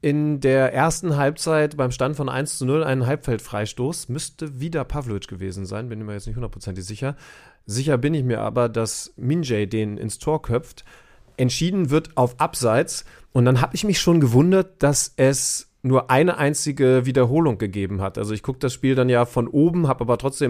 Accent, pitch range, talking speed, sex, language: German, 120-150 Hz, 190 wpm, male, German